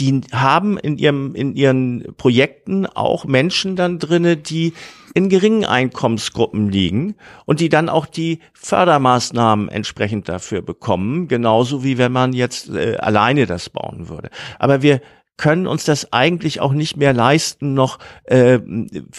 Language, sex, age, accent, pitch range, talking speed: German, male, 50-69, German, 115-150 Hz, 145 wpm